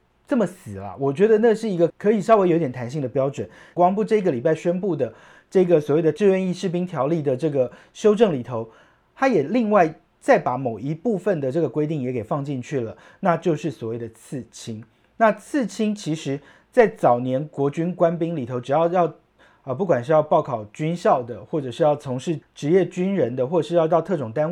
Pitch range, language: 135-185 Hz, Chinese